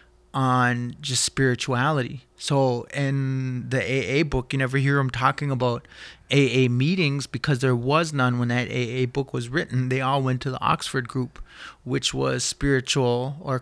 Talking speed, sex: 165 wpm, male